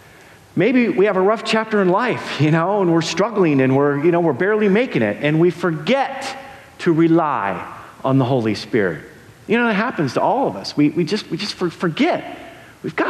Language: English